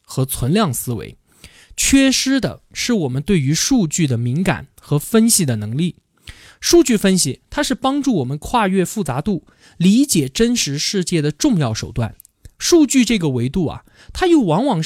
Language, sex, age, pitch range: Chinese, male, 20-39, 140-235 Hz